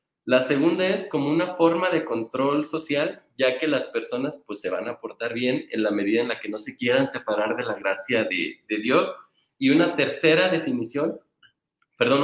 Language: Spanish